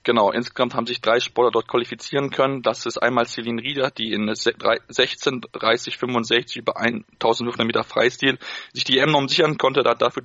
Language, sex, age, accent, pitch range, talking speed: German, male, 20-39, German, 115-130 Hz, 180 wpm